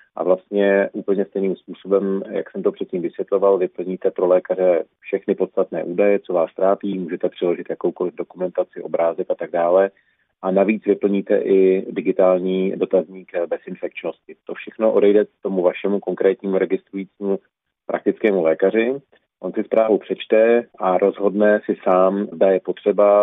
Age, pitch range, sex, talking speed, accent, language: 40-59, 90-100 Hz, male, 145 wpm, native, Czech